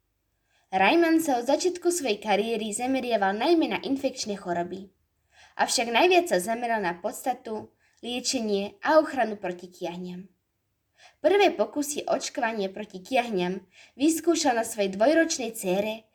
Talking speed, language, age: 120 wpm, Slovak, 20-39